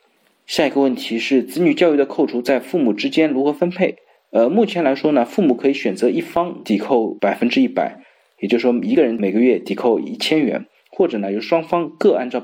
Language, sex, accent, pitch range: Chinese, male, native, 120-155 Hz